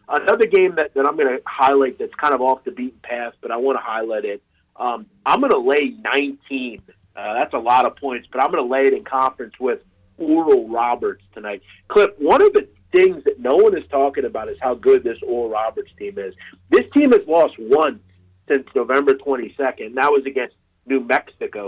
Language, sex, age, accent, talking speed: English, male, 40-59, American, 215 wpm